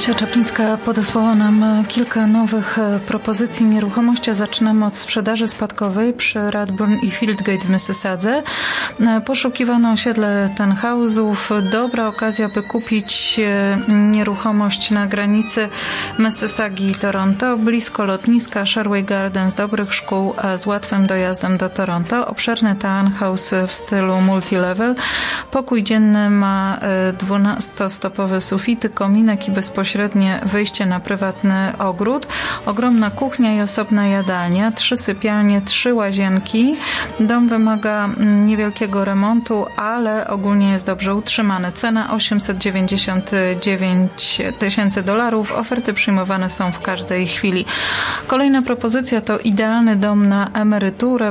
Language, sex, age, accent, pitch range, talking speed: Polish, female, 30-49, native, 195-225 Hz, 110 wpm